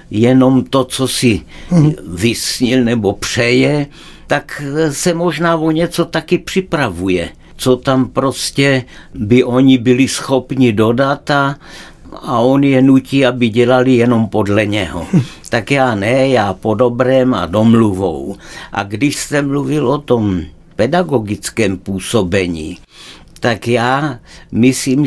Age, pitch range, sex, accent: 60-79, 115-135 Hz, male, native